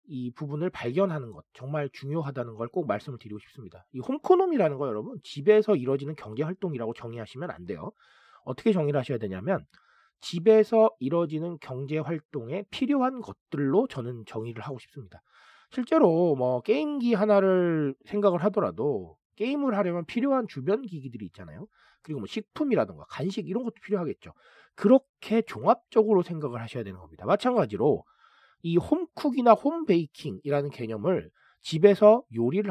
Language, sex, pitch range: Korean, male, 135-225 Hz